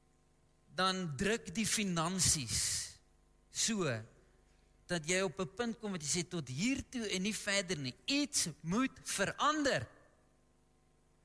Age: 40-59